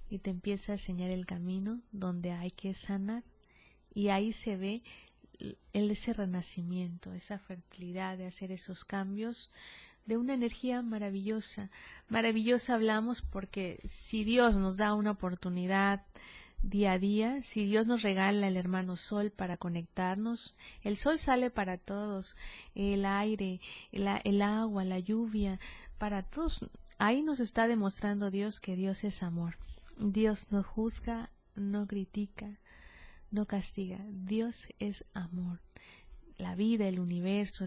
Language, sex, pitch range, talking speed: Spanish, female, 190-215 Hz, 135 wpm